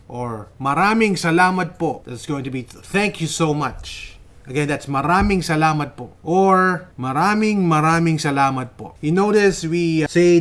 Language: Filipino